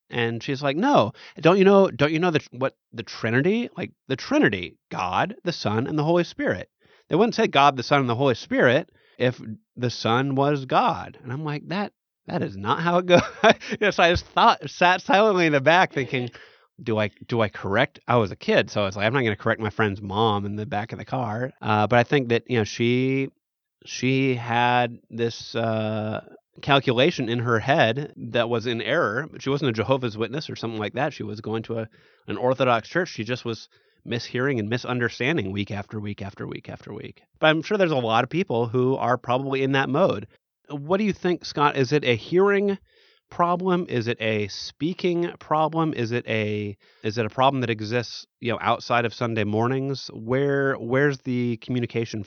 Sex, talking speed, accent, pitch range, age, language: male, 215 wpm, American, 115-145 Hz, 30-49, English